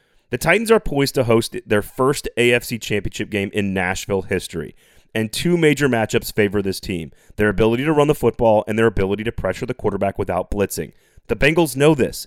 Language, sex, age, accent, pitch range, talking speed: English, male, 30-49, American, 105-145 Hz, 195 wpm